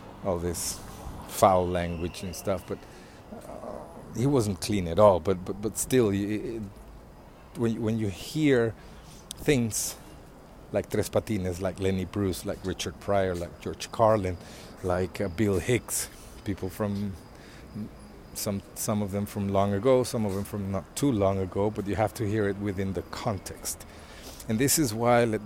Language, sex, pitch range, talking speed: English, male, 90-115 Hz, 165 wpm